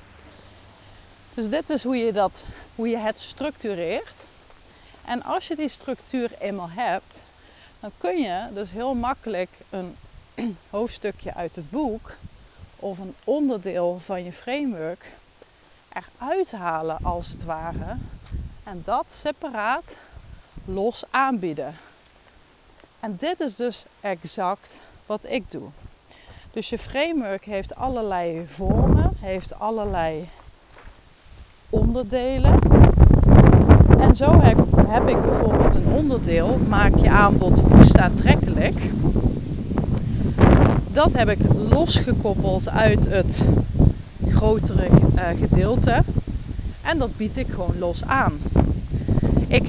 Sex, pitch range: female, 175-255 Hz